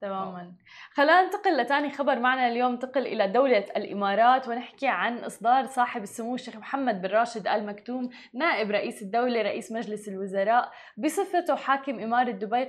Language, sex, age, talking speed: Arabic, female, 20-39, 150 wpm